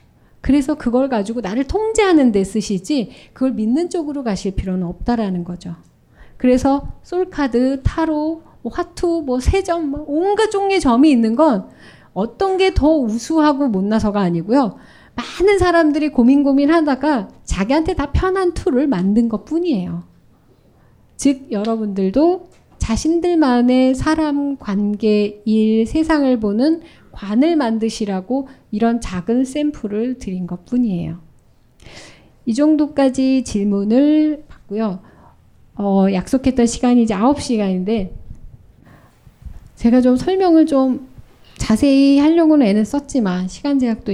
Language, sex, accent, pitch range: Korean, female, native, 210-295 Hz